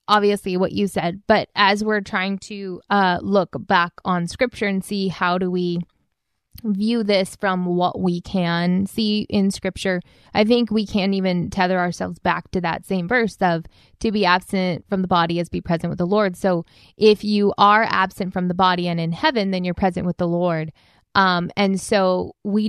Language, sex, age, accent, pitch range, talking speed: English, female, 20-39, American, 180-210 Hz, 195 wpm